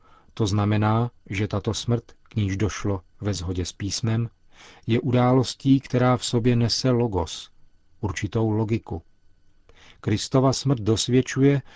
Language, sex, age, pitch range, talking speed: Czech, male, 40-59, 95-115 Hz, 120 wpm